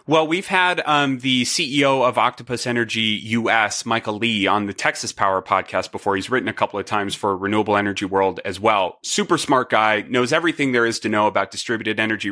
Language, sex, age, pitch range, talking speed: English, male, 30-49, 115-145 Hz, 205 wpm